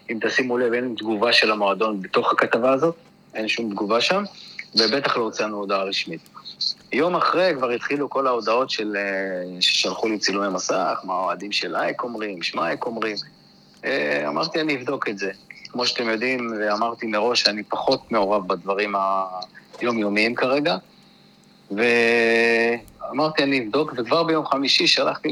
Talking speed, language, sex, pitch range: 145 wpm, Hebrew, male, 105-140 Hz